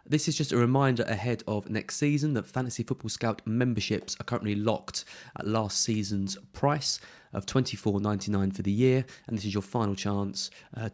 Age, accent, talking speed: 30-49, British, 180 wpm